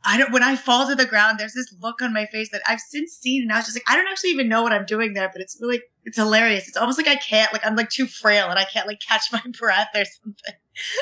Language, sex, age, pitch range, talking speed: English, female, 30-49, 190-245 Hz, 305 wpm